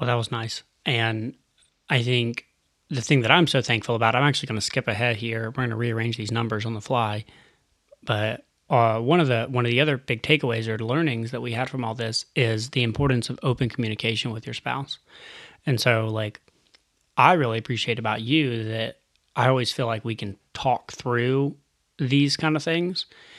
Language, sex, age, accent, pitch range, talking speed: English, male, 30-49, American, 110-135 Hz, 205 wpm